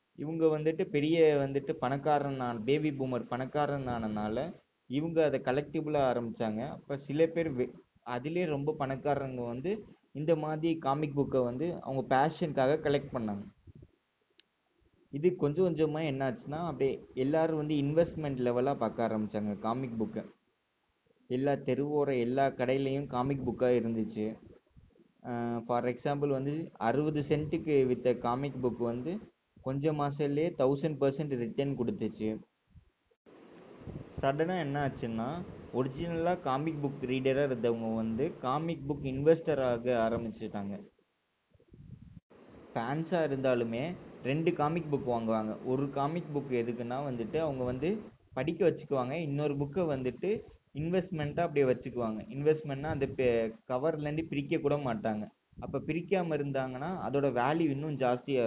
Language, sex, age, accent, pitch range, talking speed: Tamil, male, 20-39, native, 125-155 Hz, 115 wpm